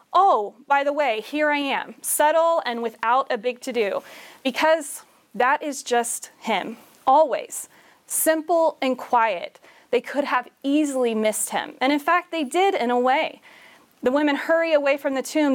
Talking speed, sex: 165 wpm, female